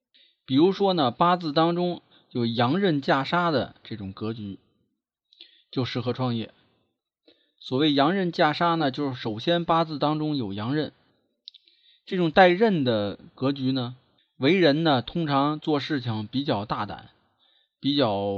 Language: Chinese